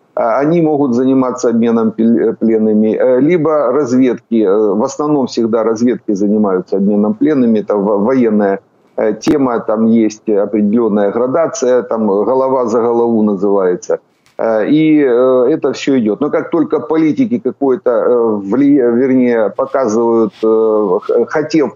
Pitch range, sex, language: 110-140 Hz, male, Ukrainian